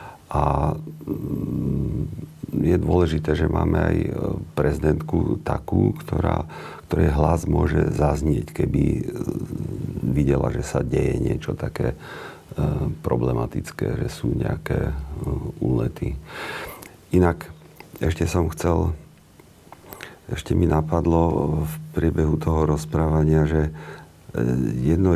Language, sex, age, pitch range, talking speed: Slovak, male, 40-59, 70-80 Hz, 90 wpm